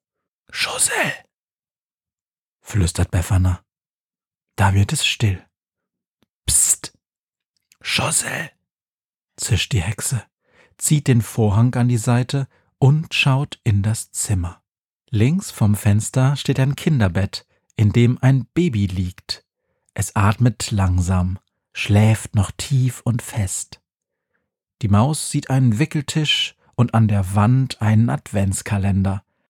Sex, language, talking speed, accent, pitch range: male, German, 110 wpm, German, 105-135 Hz